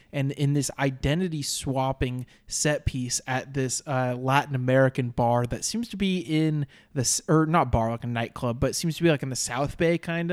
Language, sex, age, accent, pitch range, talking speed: English, male, 20-39, American, 120-145 Hz, 205 wpm